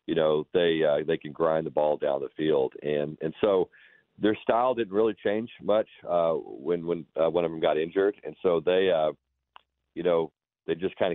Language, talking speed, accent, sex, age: English, 210 wpm, American, male, 40-59